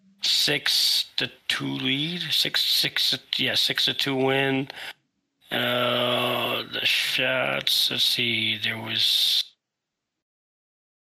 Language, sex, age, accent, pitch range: English, male, 30-49, American, 115-135 Hz